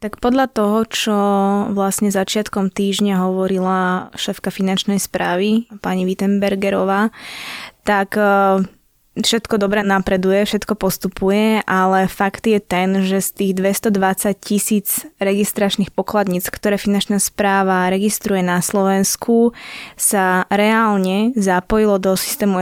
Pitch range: 190-220 Hz